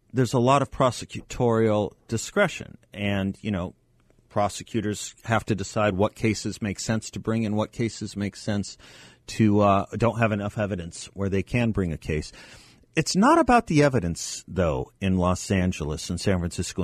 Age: 40-59